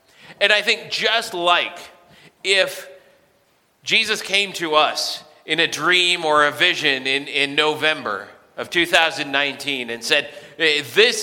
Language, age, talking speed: English, 40-59, 130 wpm